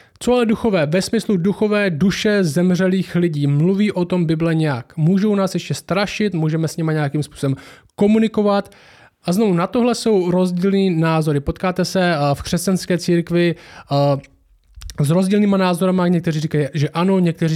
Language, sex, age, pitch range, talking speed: Czech, male, 20-39, 155-190 Hz, 150 wpm